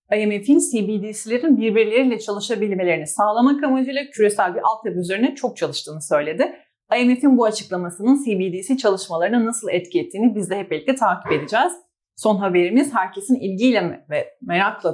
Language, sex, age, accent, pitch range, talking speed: Turkish, female, 30-49, native, 185-250 Hz, 135 wpm